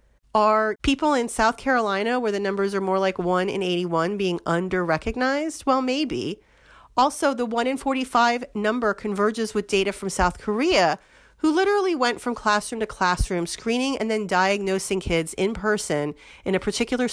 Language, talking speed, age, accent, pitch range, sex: English, 165 wpm, 40-59, American, 175-235 Hz, female